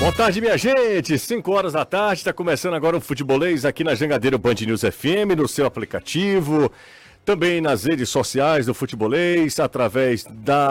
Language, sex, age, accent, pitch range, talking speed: Portuguese, male, 40-59, Brazilian, 140-205 Hz, 175 wpm